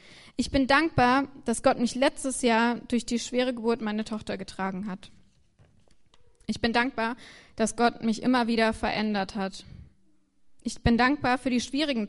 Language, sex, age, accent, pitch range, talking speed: German, female, 20-39, German, 220-255 Hz, 160 wpm